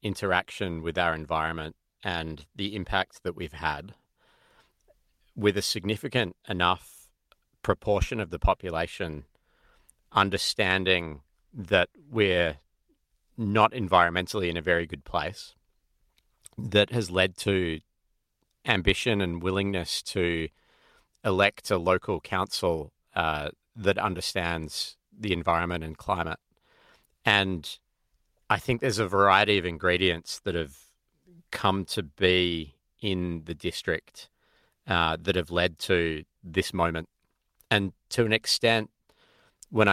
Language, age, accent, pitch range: English, 40-59, Australian, 85-100 Hz